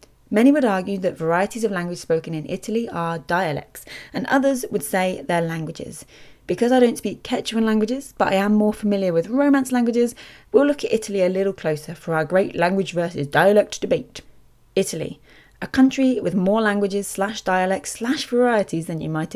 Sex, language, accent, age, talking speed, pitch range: female, English, British, 20-39, 180 wpm, 170-240 Hz